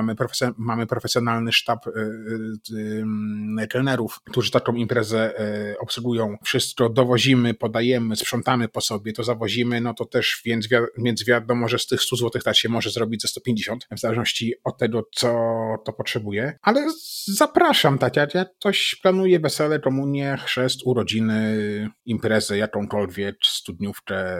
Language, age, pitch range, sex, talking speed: Polish, 30-49, 105-125 Hz, male, 145 wpm